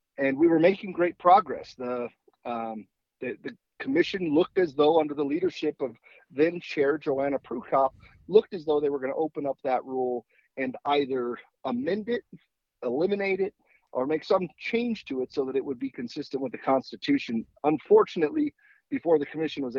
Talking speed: 180 wpm